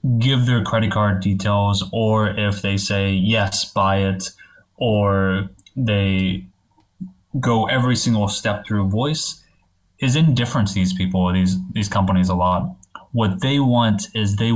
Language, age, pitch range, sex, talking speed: English, 20-39, 95-110 Hz, male, 145 wpm